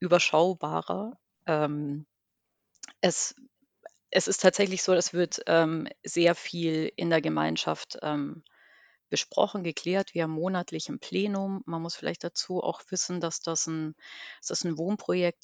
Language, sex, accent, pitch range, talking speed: German, female, German, 155-180 Hz, 130 wpm